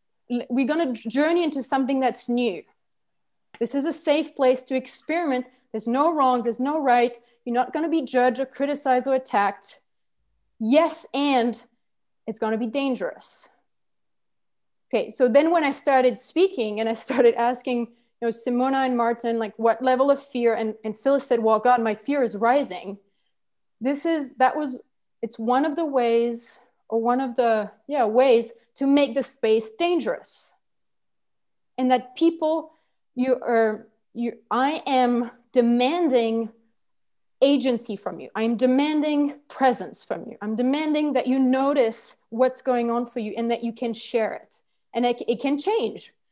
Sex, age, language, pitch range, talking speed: female, 30-49, English, 235-275 Hz, 165 wpm